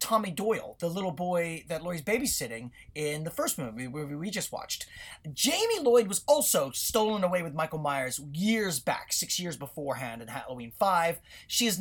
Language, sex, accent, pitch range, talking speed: English, male, American, 175-230 Hz, 175 wpm